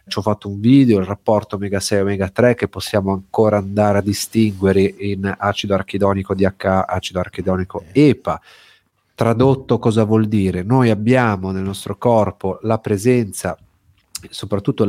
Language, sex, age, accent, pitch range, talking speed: Italian, male, 40-59, native, 95-120 Hz, 145 wpm